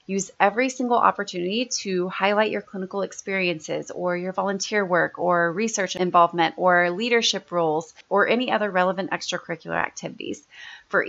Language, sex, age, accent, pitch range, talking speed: English, female, 30-49, American, 180-220 Hz, 140 wpm